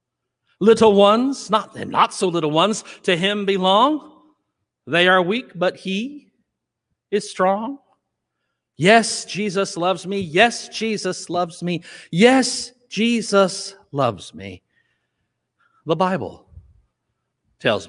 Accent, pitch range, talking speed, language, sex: American, 160-210 Hz, 110 wpm, English, male